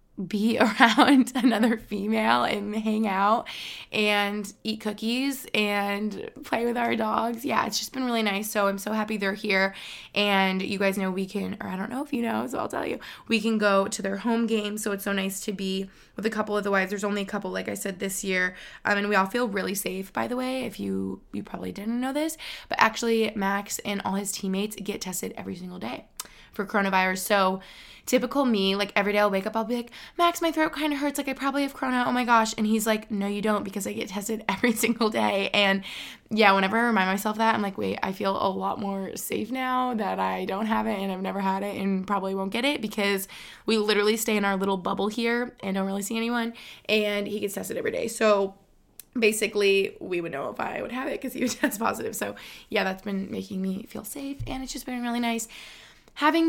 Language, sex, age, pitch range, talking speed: English, female, 20-39, 195-235 Hz, 240 wpm